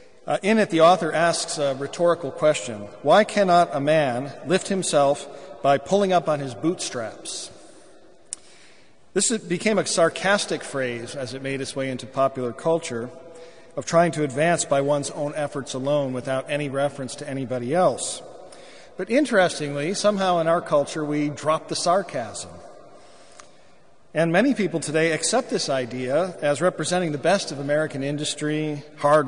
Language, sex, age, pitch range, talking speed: English, male, 40-59, 135-170 Hz, 150 wpm